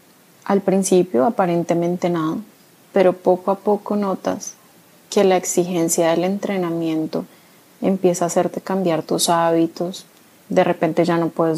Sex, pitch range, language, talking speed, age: female, 165-190 Hz, Spanish, 130 wpm, 20-39